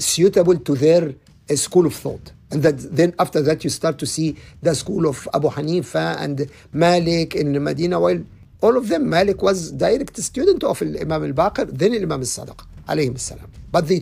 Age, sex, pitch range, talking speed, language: 50-69, male, 145-185 Hz, 175 wpm, English